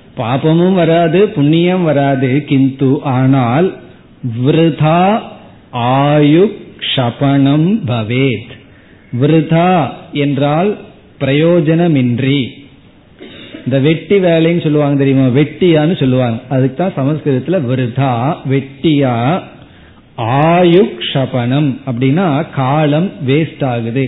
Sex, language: male, Tamil